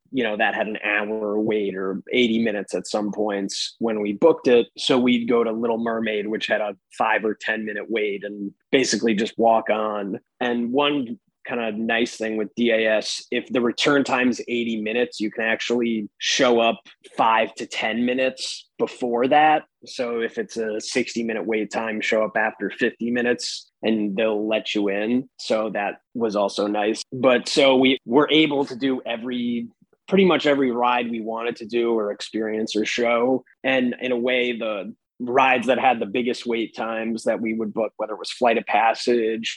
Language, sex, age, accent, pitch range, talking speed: English, male, 20-39, American, 110-125 Hz, 195 wpm